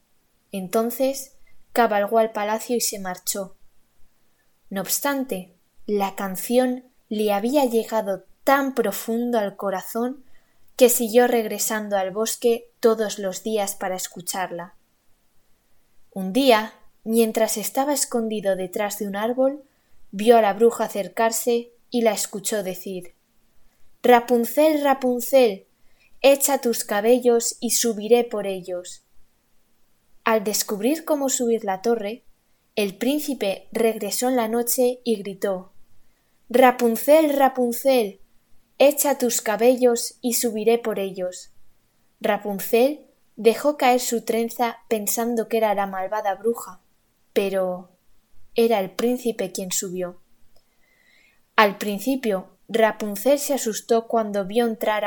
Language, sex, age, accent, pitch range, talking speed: Italian, female, 20-39, Spanish, 200-245 Hz, 110 wpm